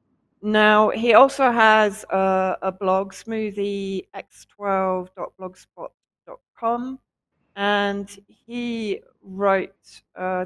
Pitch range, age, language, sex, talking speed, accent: 175-200 Hz, 40-59, English, female, 75 wpm, British